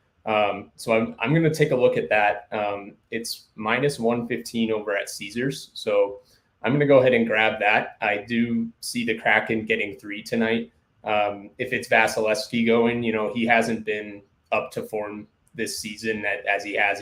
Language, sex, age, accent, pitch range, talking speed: English, male, 20-39, American, 100-120 Hz, 185 wpm